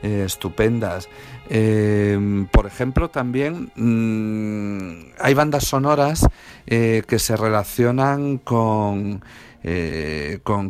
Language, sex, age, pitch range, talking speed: Spanish, male, 50-69, 100-120 Hz, 95 wpm